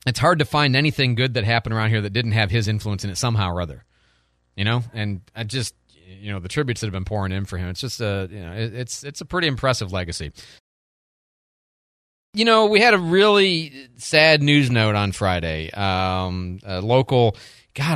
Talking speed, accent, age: 210 wpm, American, 30-49